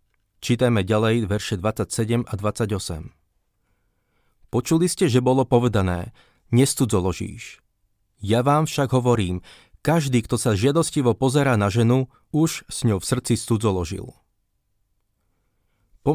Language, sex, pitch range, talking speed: Slovak, male, 105-130 Hz, 110 wpm